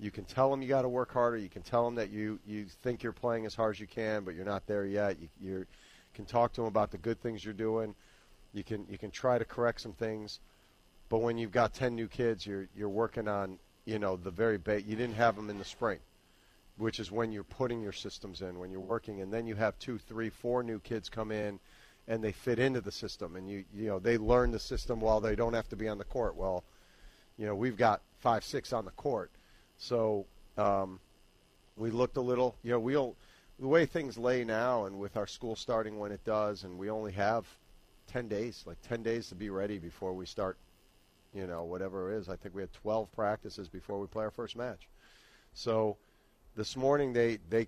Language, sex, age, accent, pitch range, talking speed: English, male, 40-59, American, 100-115 Hz, 235 wpm